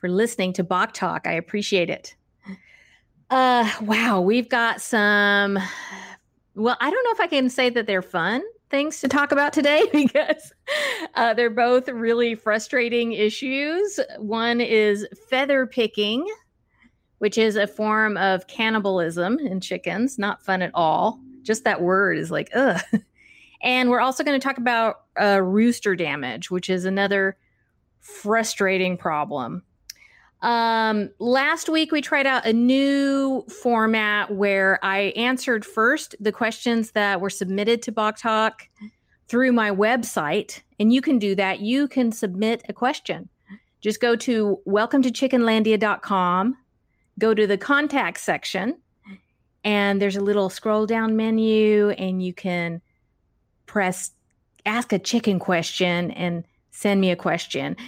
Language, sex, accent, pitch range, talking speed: English, female, American, 195-250 Hz, 140 wpm